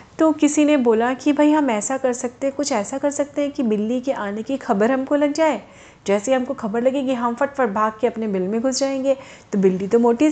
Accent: native